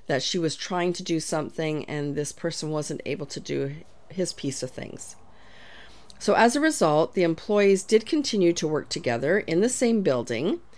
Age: 40-59